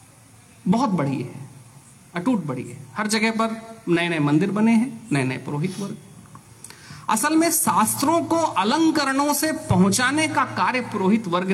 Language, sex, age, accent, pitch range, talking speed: Hindi, male, 40-59, native, 165-255 Hz, 150 wpm